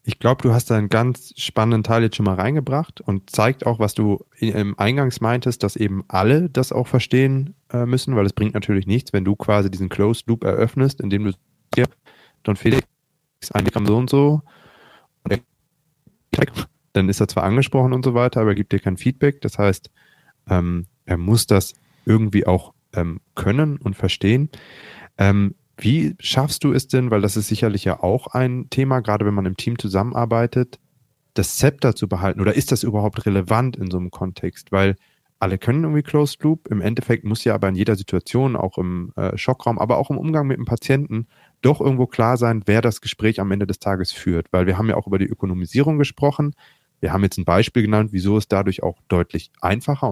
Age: 30-49